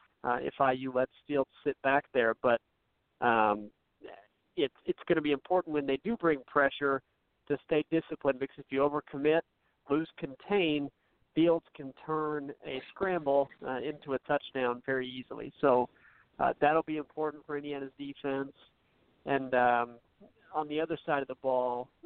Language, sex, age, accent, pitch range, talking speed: English, male, 50-69, American, 135-155 Hz, 160 wpm